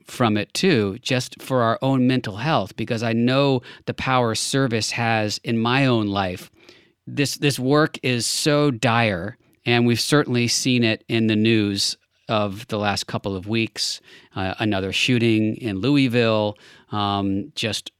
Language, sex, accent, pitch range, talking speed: English, male, American, 105-125 Hz, 155 wpm